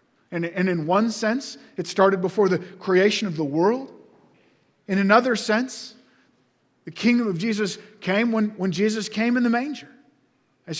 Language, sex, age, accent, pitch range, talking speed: English, male, 40-59, American, 180-220 Hz, 155 wpm